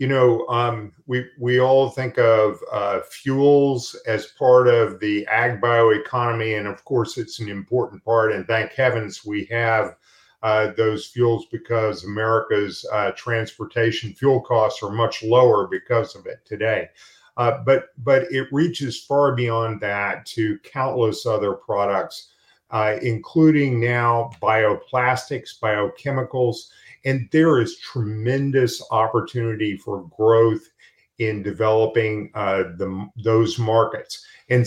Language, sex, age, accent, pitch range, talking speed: English, male, 50-69, American, 110-130 Hz, 130 wpm